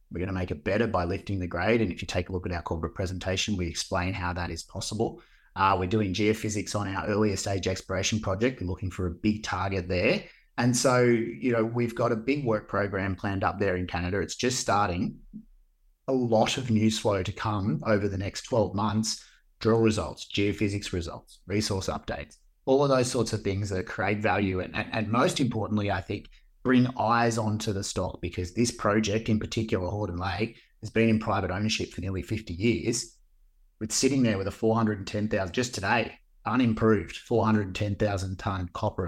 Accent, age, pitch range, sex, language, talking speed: Australian, 30-49, 90-110 Hz, male, English, 195 wpm